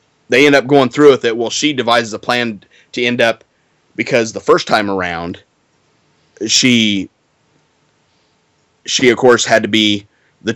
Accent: American